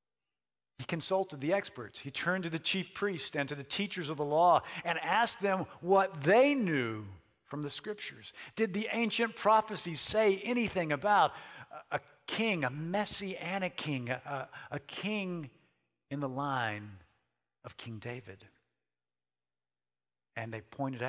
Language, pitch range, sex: English, 125-185 Hz, male